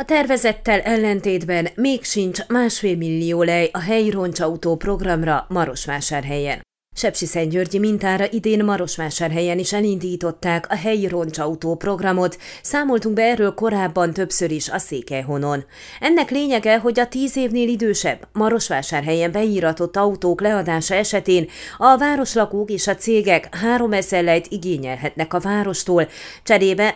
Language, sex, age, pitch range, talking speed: Hungarian, female, 30-49, 170-220 Hz, 120 wpm